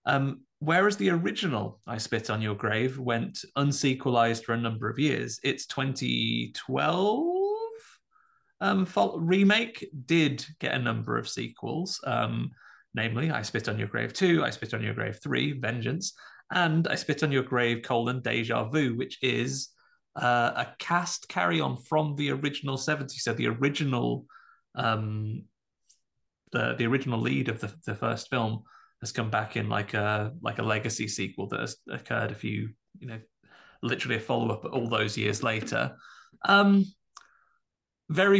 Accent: British